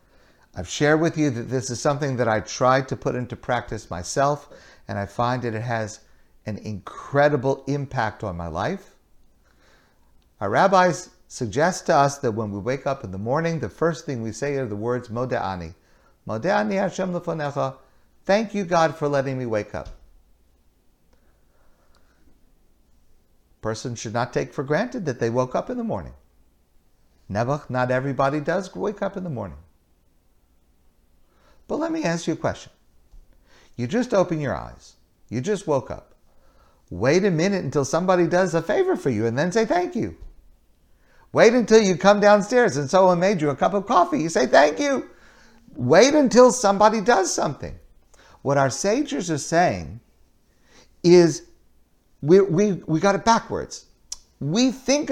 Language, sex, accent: English, male, American